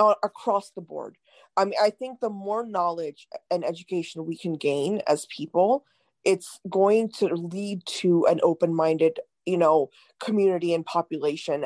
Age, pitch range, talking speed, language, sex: 20-39, 175-220 Hz, 150 wpm, English, female